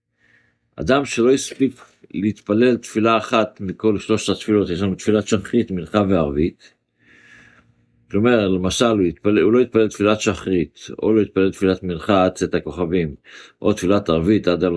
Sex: male